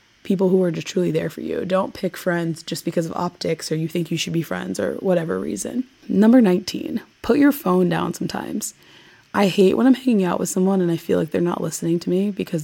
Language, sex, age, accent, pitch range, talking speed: English, female, 20-39, American, 170-205 Hz, 235 wpm